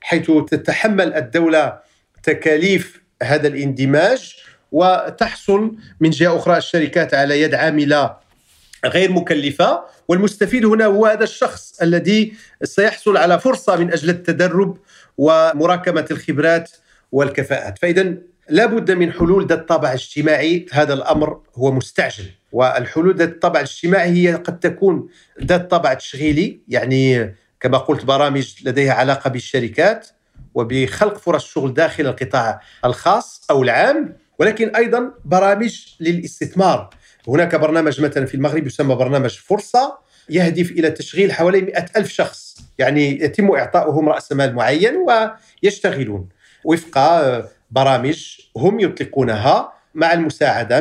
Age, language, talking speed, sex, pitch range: 50-69, Arabic, 115 wpm, male, 145-190 Hz